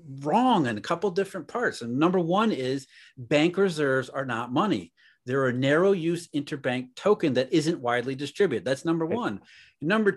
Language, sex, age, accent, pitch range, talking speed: English, male, 40-59, American, 140-195 Hz, 175 wpm